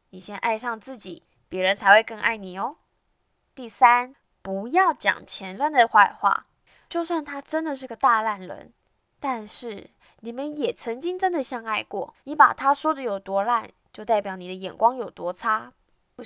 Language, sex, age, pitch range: Chinese, female, 10-29, 200-275 Hz